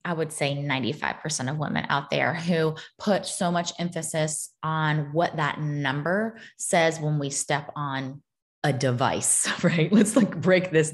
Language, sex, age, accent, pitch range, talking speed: English, female, 20-39, American, 155-225 Hz, 160 wpm